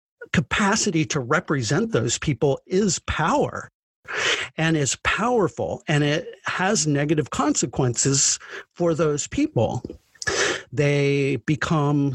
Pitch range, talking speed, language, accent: 130-180 Hz, 100 wpm, English, American